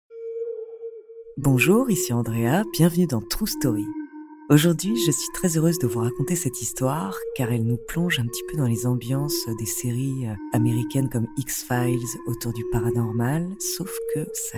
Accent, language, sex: French, French, female